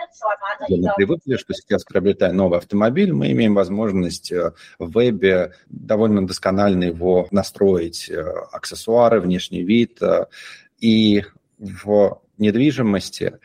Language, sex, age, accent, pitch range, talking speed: Russian, male, 30-49, native, 90-110 Hz, 100 wpm